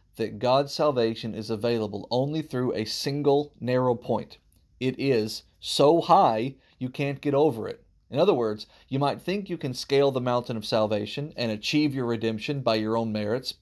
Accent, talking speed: American, 180 wpm